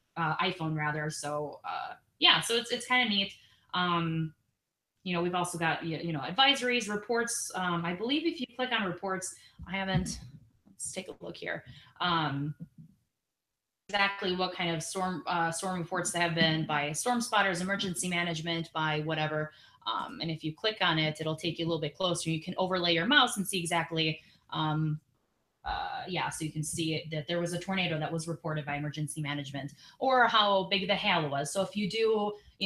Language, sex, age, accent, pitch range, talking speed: English, female, 20-39, American, 155-200 Hz, 200 wpm